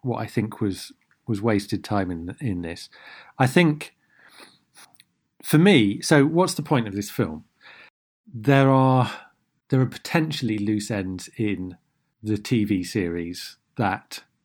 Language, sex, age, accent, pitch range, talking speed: English, male, 40-59, British, 105-140 Hz, 135 wpm